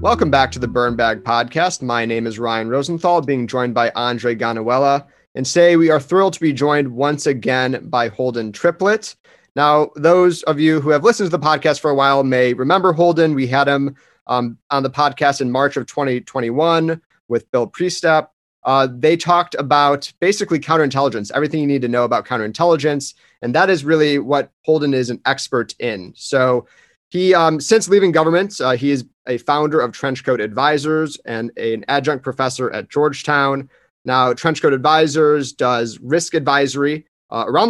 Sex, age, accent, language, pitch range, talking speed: male, 30-49, American, English, 125-155 Hz, 175 wpm